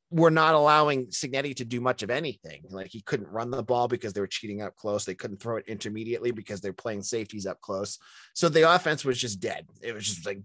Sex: male